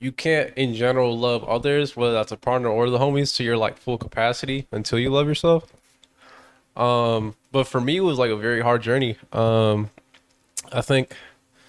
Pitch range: 120-140 Hz